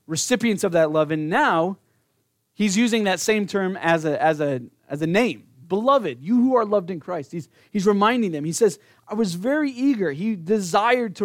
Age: 30-49